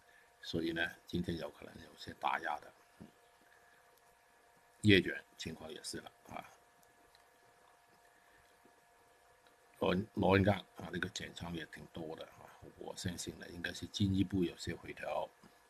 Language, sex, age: Chinese, male, 60-79